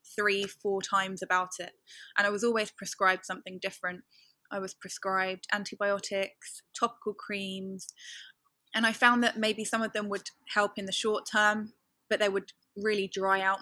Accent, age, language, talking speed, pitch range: British, 10-29, French, 165 wpm, 190-215 Hz